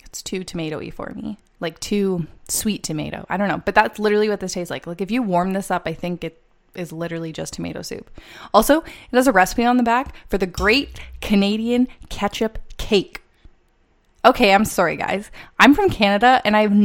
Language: English